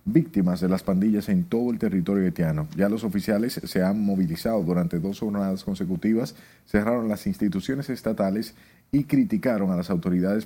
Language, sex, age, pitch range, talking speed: Spanish, male, 40-59, 100-130 Hz, 160 wpm